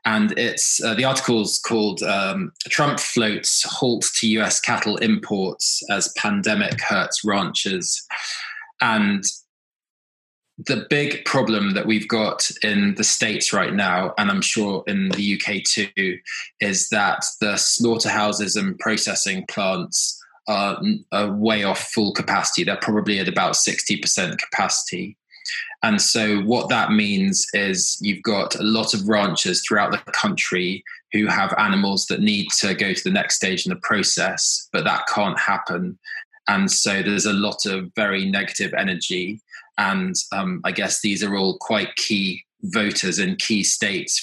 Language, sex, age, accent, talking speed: English, male, 20-39, British, 150 wpm